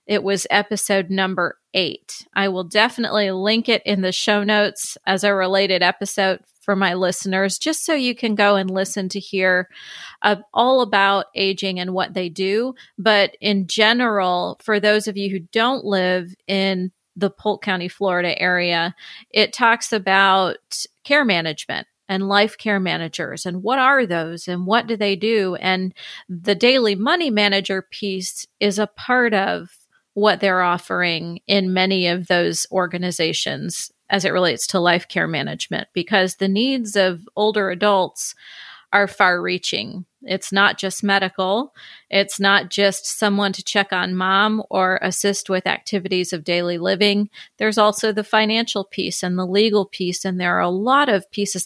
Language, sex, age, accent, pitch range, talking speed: English, female, 30-49, American, 185-210 Hz, 165 wpm